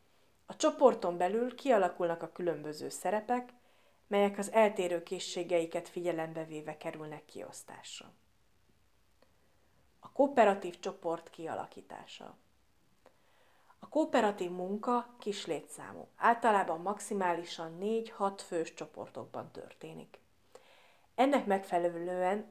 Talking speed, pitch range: 85 wpm, 170-215 Hz